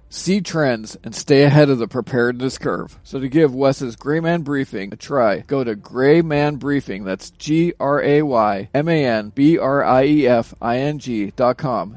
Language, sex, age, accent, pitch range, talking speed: English, male, 40-59, American, 120-160 Hz, 125 wpm